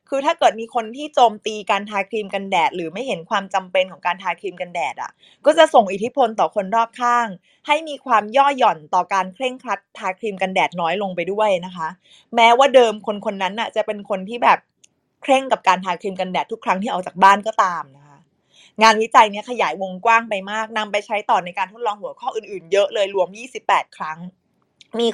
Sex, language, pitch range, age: female, Thai, 190-245 Hz, 20-39